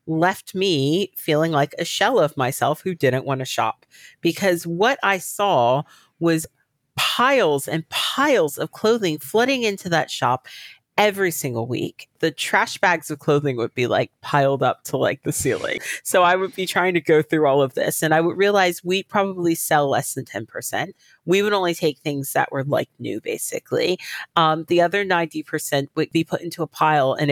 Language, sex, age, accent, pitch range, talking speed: English, female, 40-59, American, 140-180 Hz, 185 wpm